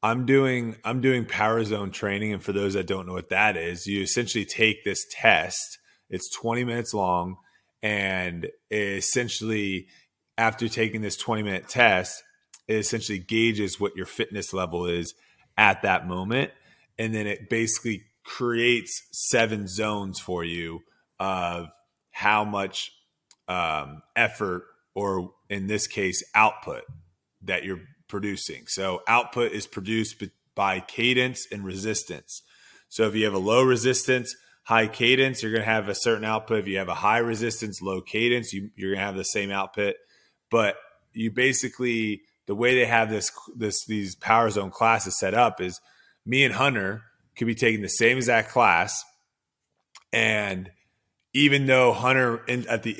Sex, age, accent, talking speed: male, 30-49, American, 155 wpm